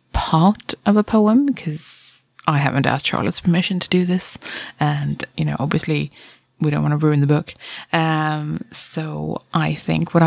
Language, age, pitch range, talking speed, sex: English, 20-39, 145-185 Hz, 170 wpm, female